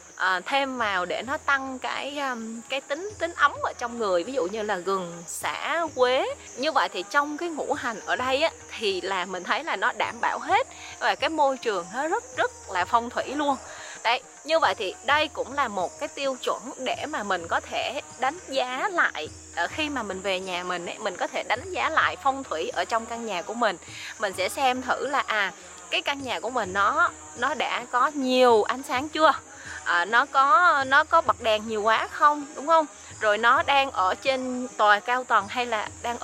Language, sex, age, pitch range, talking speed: Vietnamese, female, 20-39, 225-295 Hz, 220 wpm